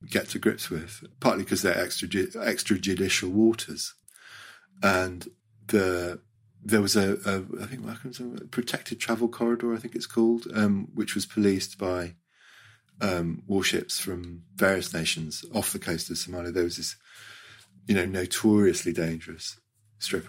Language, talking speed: English, 145 wpm